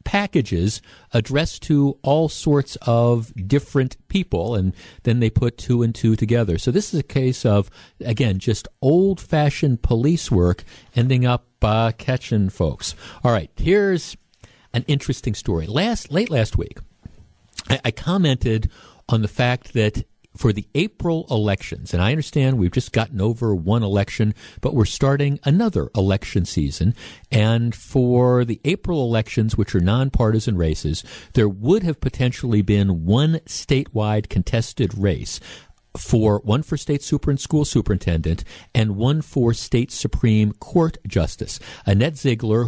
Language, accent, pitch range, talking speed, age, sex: English, American, 105-135 Hz, 140 wpm, 50-69, male